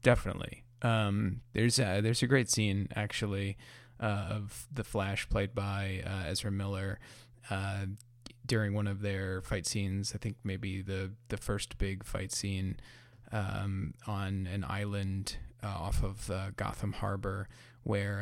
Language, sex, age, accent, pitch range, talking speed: English, male, 20-39, American, 100-115 Hz, 150 wpm